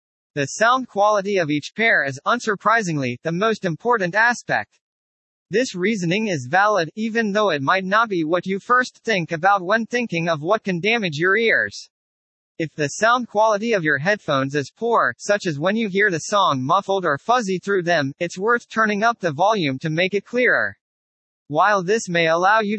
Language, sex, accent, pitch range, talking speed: English, male, American, 160-215 Hz, 185 wpm